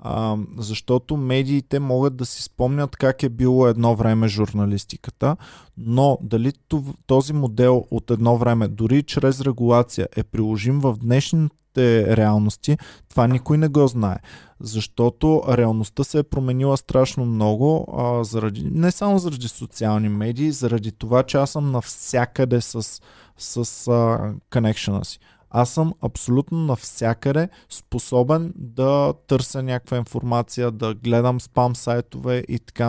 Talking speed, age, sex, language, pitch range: 130 wpm, 20-39, male, Bulgarian, 115-145 Hz